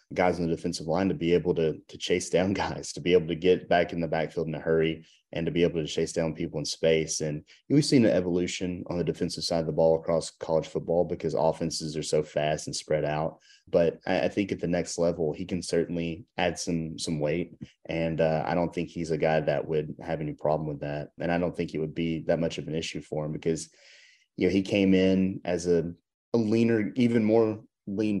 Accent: American